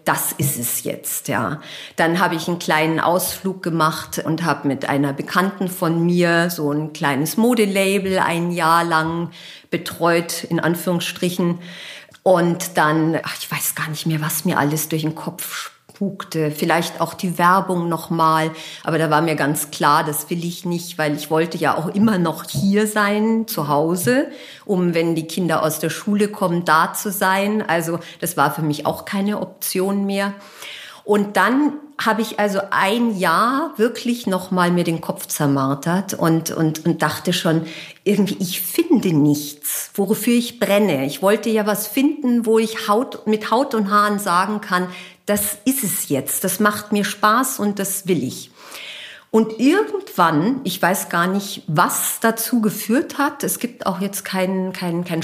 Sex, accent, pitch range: female, German, 160-210 Hz